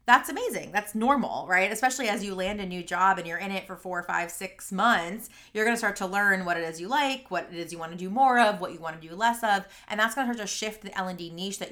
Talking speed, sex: 280 wpm, female